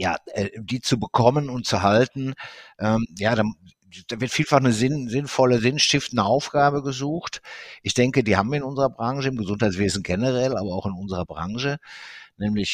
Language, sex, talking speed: German, male, 170 wpm